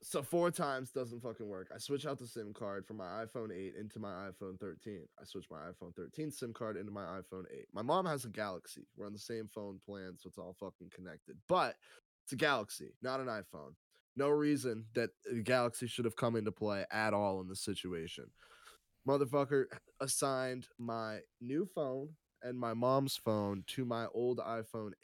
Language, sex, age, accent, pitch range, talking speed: English, male, 10-29, American, 105-125 Hz, 195 wpm